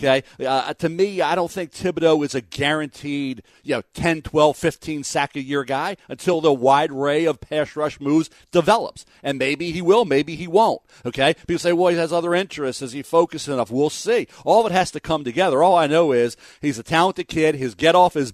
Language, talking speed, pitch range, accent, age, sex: English, 225 wpm, 135-165 Hz, American, 50-69, male